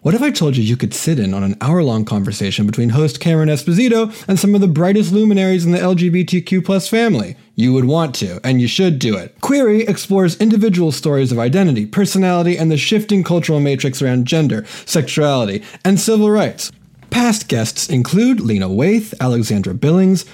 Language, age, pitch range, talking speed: English, 30-49, 120-190 Hz, 185 wpm